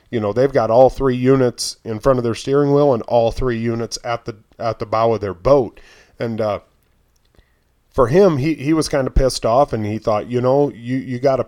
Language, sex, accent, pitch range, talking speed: English, male, American, 115-135 Hz, 235 wpm